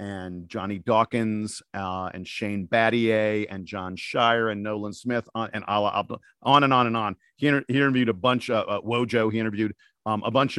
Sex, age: male, 50-69